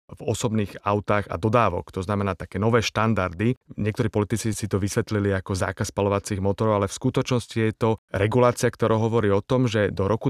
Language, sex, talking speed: Slovak, male, 185 wpm